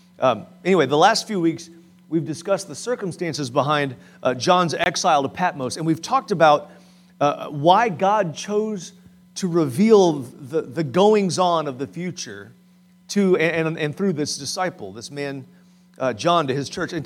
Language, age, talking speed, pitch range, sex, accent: English, 40-59, 165 wpm, 135-180 Hz, male, American